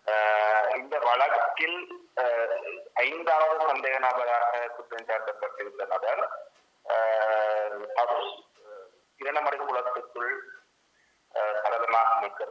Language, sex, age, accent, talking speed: English, male, 30-49, Indian, 105 wpm